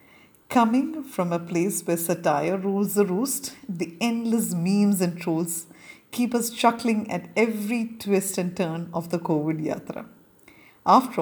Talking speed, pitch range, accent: 145 wpm, 180-225 Hz, native